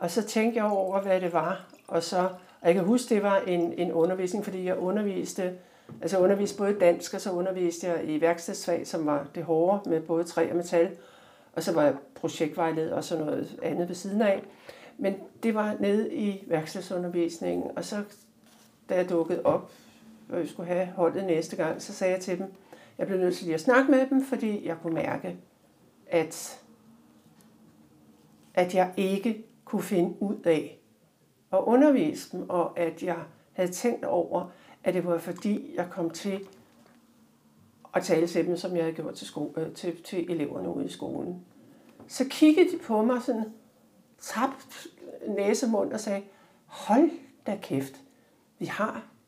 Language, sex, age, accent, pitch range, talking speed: Danish, male, 60-79, native, 170-230 Hz, 175 wpm